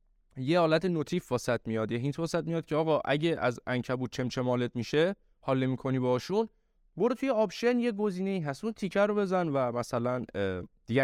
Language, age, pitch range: Persian, 20-39, 115-160 Hz